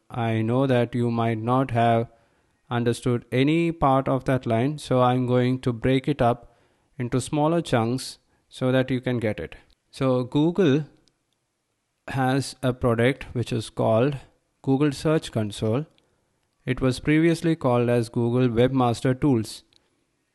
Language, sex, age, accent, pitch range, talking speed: English, male, 20-39, Indian, 120-140 Hz, 140 wpm